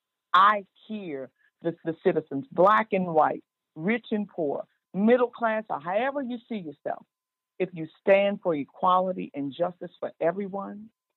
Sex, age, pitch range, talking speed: female, 50-69, 155-220 Hz, 145 wpm